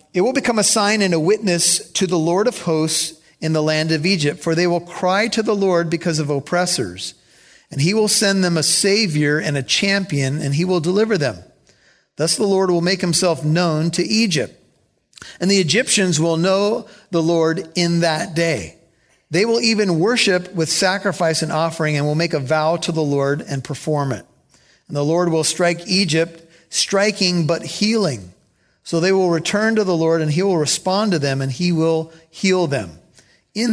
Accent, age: American, 50-69